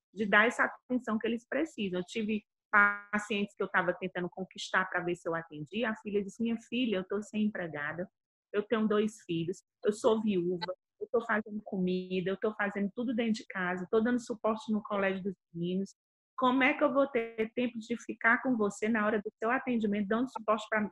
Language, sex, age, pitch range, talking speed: Portuguese, female, 30-49, 190-245 Hz, 210 wpm